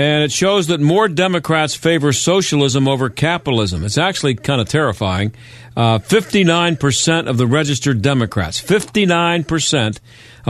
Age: 50-69